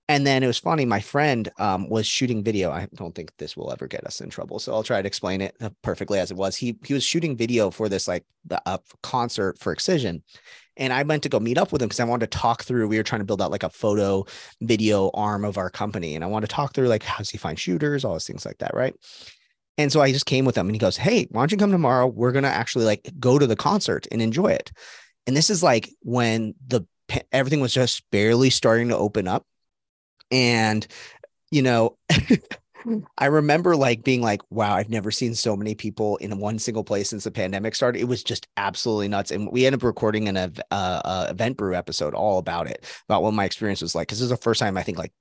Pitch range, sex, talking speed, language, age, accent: 105-130 Hz, male, 250 wpm, English, 30-49, American